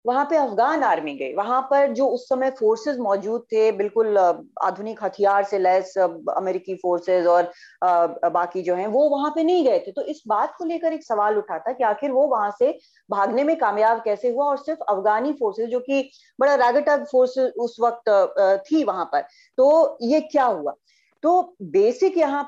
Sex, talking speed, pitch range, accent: female, 185 wpm, 195-280 Hz, native